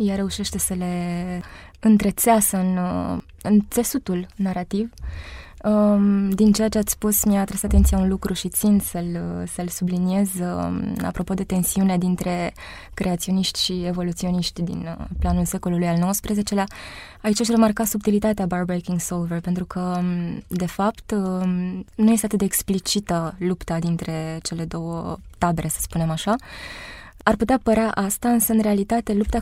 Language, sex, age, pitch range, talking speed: Romanian, female, 20-39, 180-210 Hz, 140 wpm